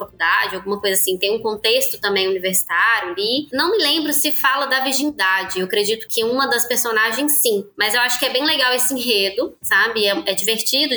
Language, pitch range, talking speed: Portuguese, 200-270 Hz, 195 wpm